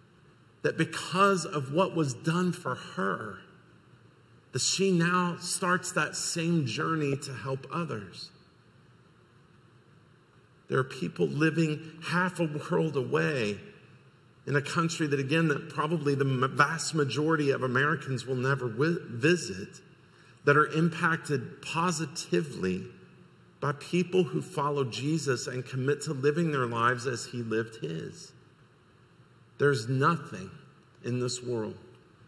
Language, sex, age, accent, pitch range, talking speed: English, male, 50-69, American, 120-155 Hz, 120 wpm